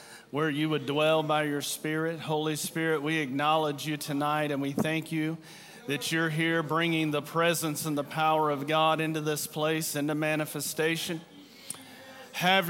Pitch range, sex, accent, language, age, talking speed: 160-180 Hz, male, American, English, 40-59, 160 wpm